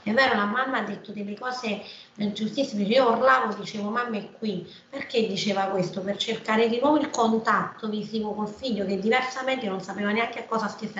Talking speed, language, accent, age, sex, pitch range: 200 wpm, Italian, native, 30-49, female, 190-230 Hz